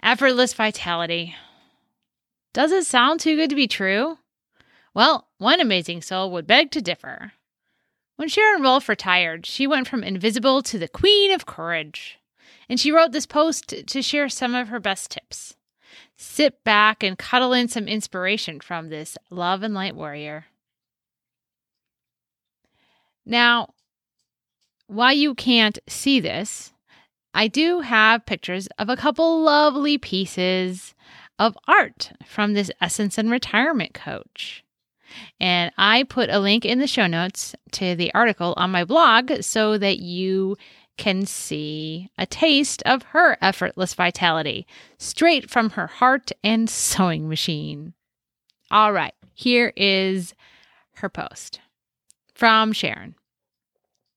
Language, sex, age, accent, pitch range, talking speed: English, female, 30-49, American, 185-260 Hz, 135 wpm